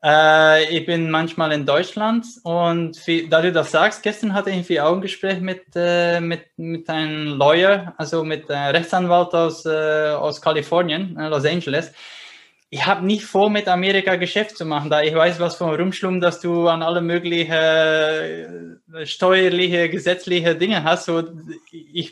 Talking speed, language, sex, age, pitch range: 145 wpm, German, male, 20-39, 155-180 Hz